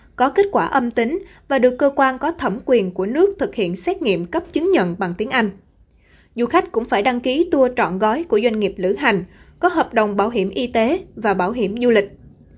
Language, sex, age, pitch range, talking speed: Vietnamese, female, 20-39, 205-300 Hz, 240 wpm